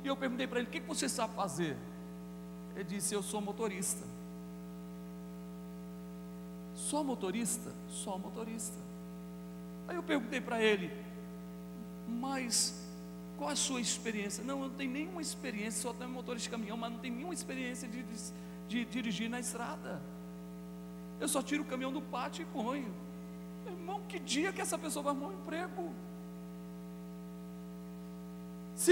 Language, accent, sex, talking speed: Portuguese, Brazilian, male, 145 wpm